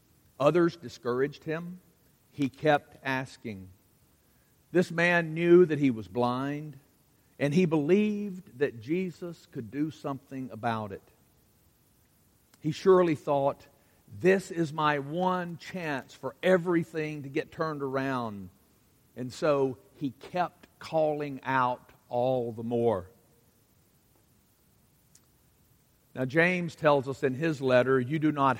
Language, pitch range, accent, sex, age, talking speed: English, 125-160 Hz, American, male, 50-69, 120 wpm